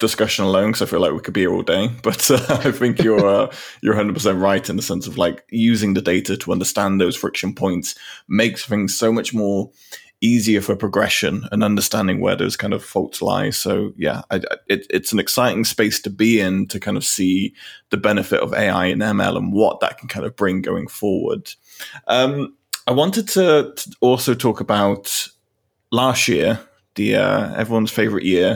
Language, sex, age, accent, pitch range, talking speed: English, male, 20-39, British, 100-120 Hz, 195 wpm